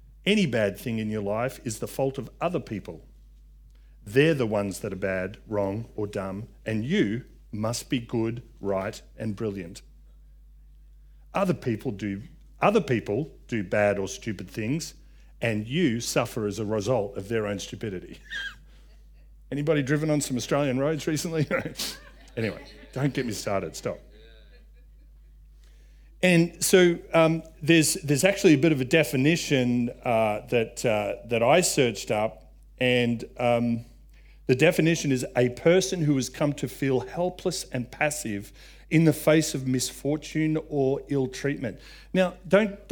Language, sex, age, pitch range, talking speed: English, male, 40-59, 100-155 Hz, 145 wpm